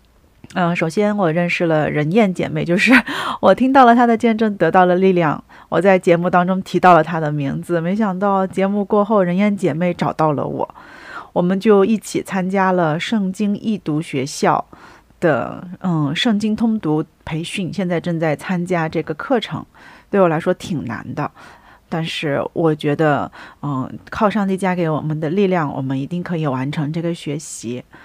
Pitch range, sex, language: 160-205 Hz, female, Korean